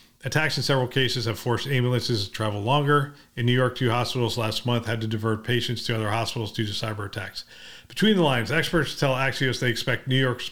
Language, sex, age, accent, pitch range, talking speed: English, male, 40-59, American, 115-130 Hz, 215 wpm